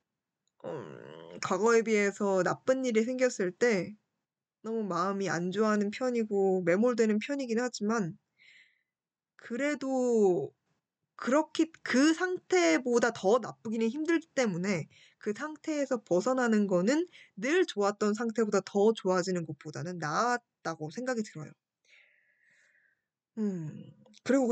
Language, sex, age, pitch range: Korean, female, 20-39, 195-285 Hz